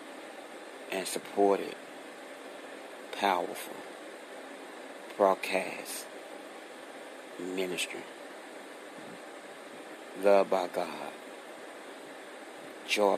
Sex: male